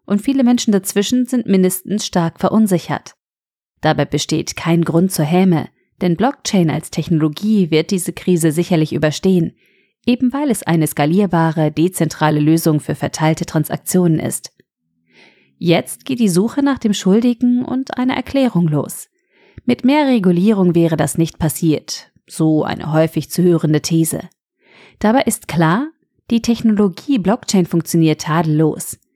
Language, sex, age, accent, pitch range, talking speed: German, female, 30-49, German, 160-215 Hz, 135 wpm